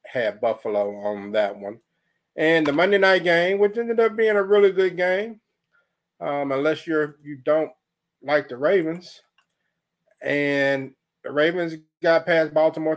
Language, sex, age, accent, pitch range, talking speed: English, male, 40-59, American, 135-175 Hz, 150 wpm